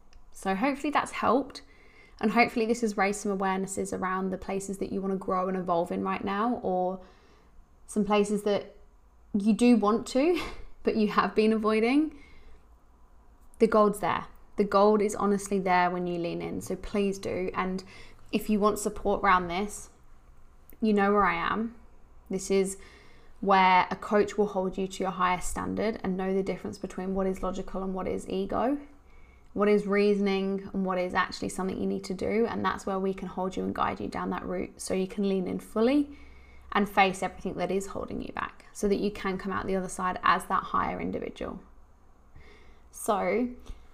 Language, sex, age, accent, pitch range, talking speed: English, female, 20-39, British, 185-215 Hz, 195 wpm